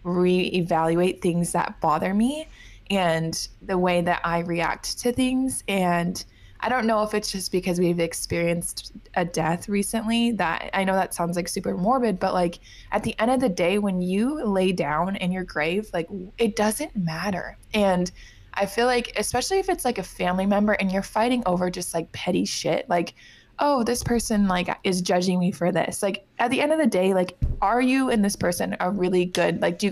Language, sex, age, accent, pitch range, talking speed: English, female, 20-39, American, 180-225 Hz, 205 wpm